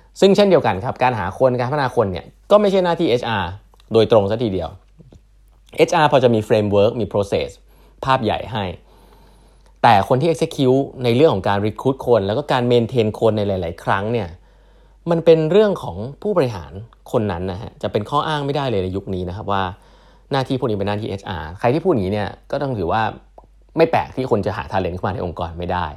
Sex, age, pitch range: male, 20-39, 95-130 Hz